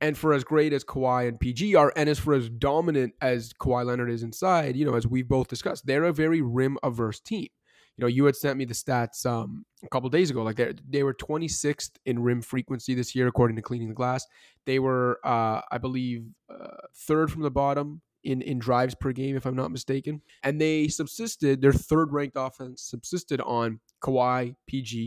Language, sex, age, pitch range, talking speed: English, male, 20-39, 120-140 Hz, 215 wpm